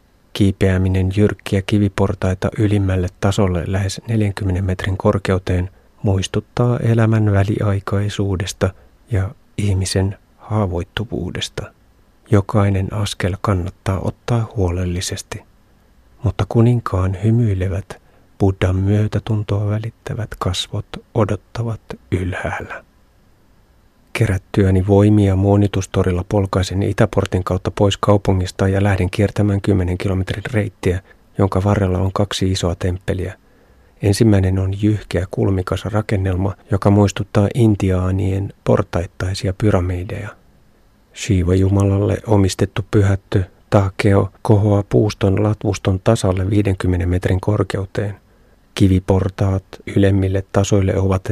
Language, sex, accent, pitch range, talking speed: Finnish, male, native, 95-105 Hz, 85 wpm